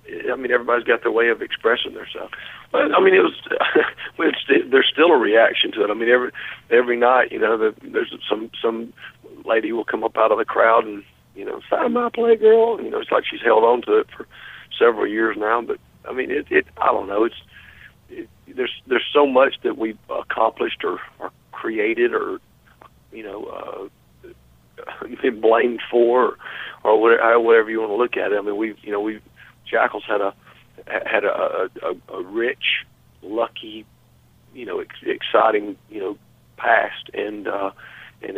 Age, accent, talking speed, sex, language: 50-69, American, 190 wpm, male, English